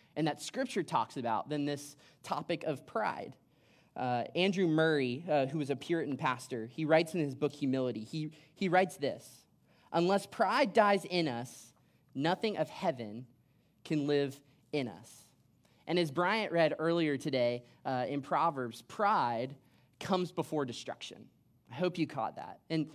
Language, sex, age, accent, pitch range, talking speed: English, male, 20-39, American, 135-185 Hz, 155 wpm